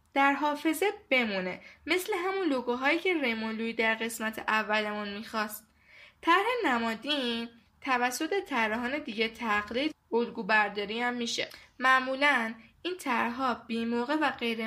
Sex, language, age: female, Persian, 10-29